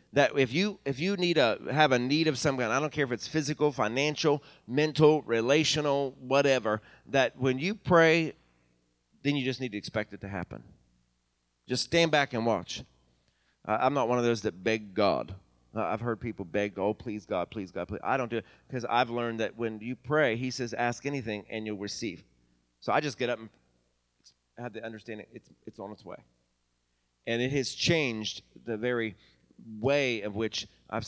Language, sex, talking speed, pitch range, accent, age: English, male, 200 wpm, 100-125 Hz, American, 30-49